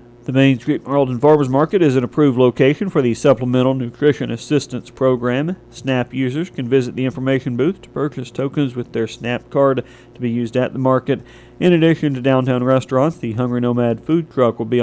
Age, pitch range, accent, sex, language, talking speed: 40-59, 120-135 Hz, American, male, English, 195 wpm